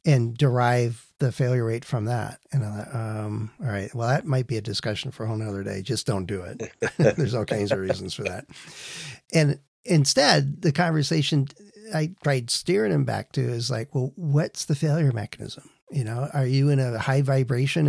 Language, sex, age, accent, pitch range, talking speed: English, male, 50-69, American, 120-145 Hz, 200 wpm